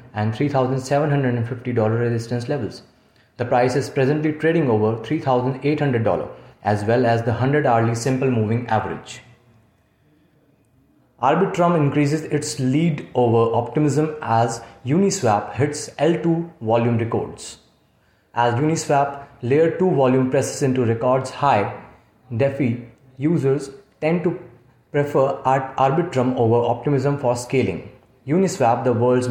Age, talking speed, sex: 30-49, 110 wpm, male